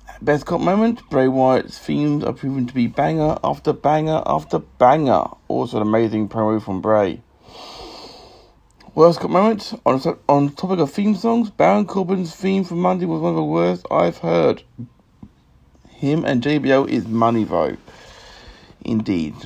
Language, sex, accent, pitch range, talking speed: English, male, British, 115-150 Hz, 150 wpm